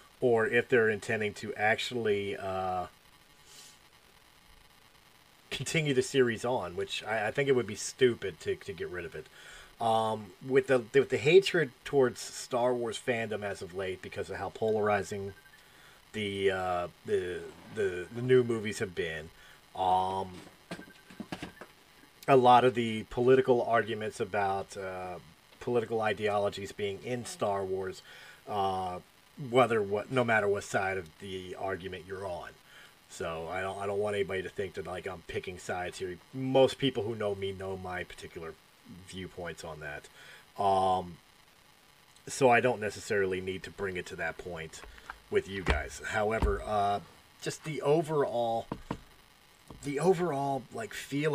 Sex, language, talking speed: male, English, 150 wpm